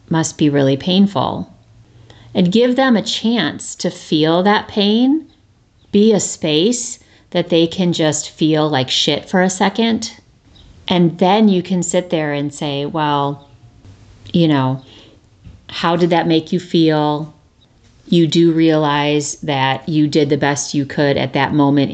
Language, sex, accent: English, female, American